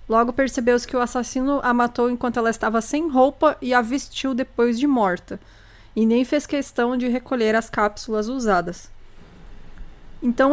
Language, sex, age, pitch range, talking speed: Portuguese, female, 20-39, 230-270 Hz, 160 wpm